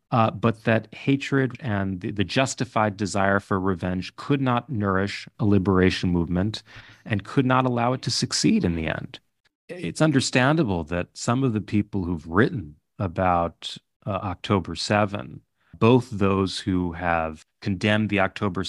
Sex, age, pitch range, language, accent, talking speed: male, 30-49, 90-115 Hz, English, American, 150 wpm